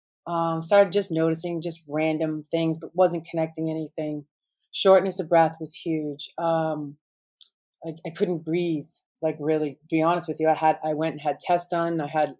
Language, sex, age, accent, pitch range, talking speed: English, female, 30-49, American, 150-170 Hz, 185 wpm